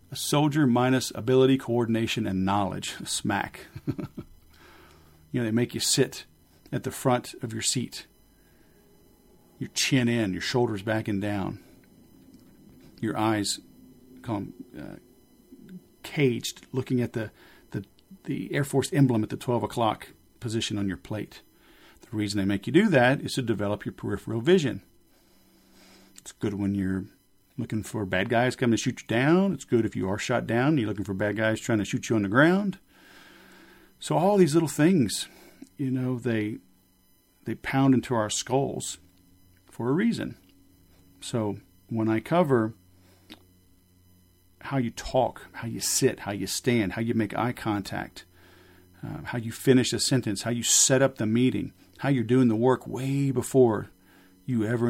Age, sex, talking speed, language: 40-59, male, 160 wpm, English